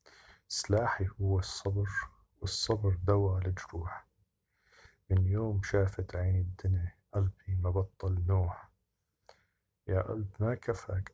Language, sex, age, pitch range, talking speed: Arabic, male, 50-69, 95-100 Hz, 95 wpm